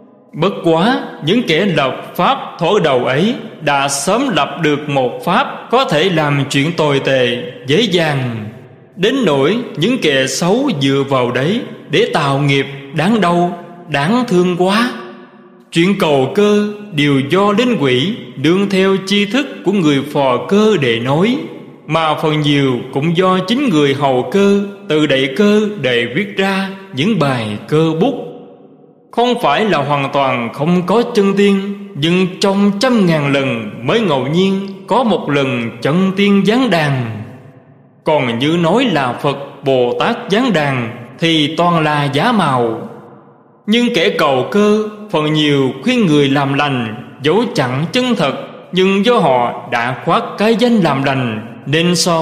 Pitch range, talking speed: 140-205 Hz, 160 wpm